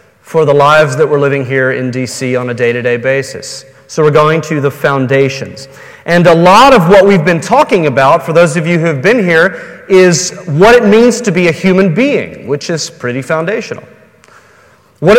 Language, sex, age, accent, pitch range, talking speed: English, male, 40-59, American, 145-195 Hz, 200 wpm